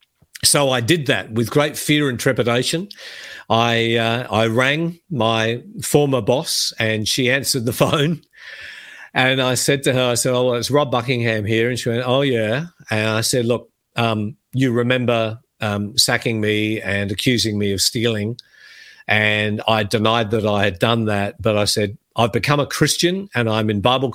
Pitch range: 110-125 Hz